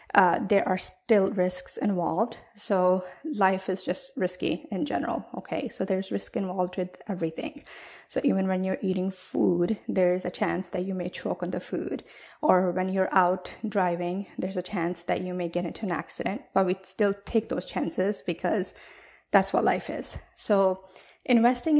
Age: 20-39